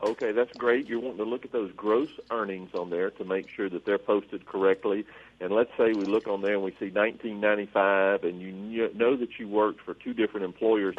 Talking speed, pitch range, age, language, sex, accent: 225 wpm, 100-130 Hz, 50-69, English, male, American